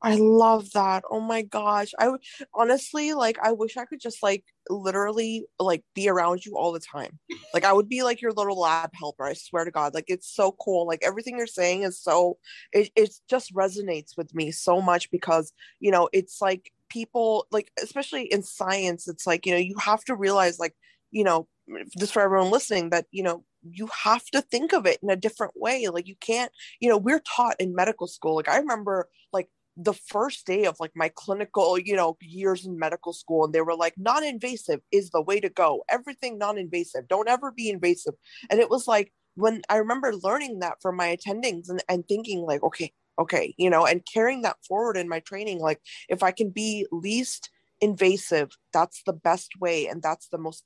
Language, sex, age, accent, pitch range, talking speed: English, female, 20-39, American, 175-225 Hz, 210 wpm